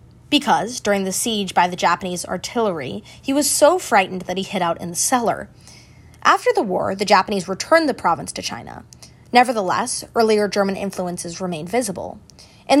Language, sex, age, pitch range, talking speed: English, female, 20-39, 185-255 Hz, 170 wpm